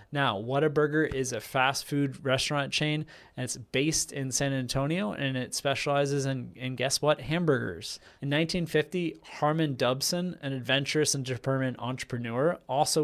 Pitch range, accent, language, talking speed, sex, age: 130-150 Hz, American, English, 145 wpm, male, 20-39